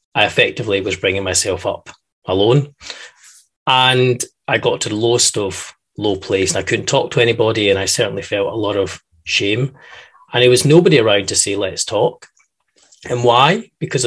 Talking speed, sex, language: 180 wpm, male, English